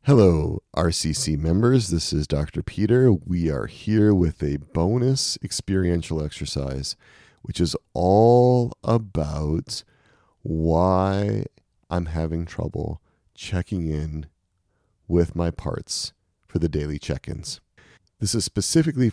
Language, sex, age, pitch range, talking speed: English, male, 40-59, 85-120 Hz, 110 wpm